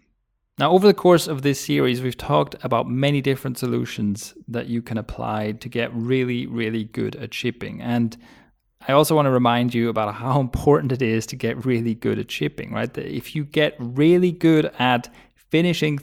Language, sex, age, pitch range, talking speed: English, male, 30-49, 120-150 Hz, 185 wpm